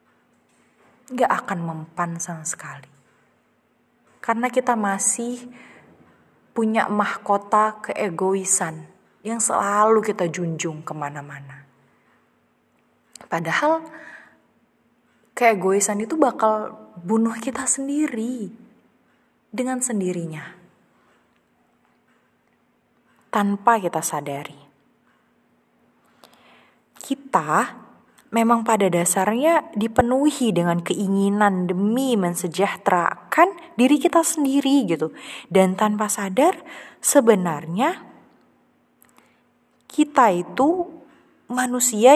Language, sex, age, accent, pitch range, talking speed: Indonesian, female, 20-39, native, 195-260 Hz, 70 wpm